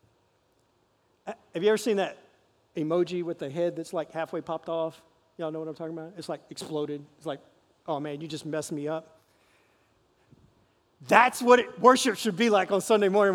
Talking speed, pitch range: 185 wpm, 160-230 Hz